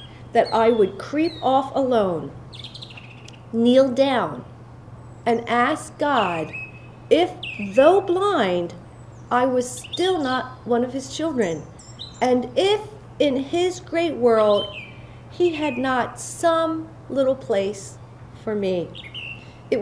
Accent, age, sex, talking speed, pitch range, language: American, 50-69, female, 110 wpm, 220-295 Hz, English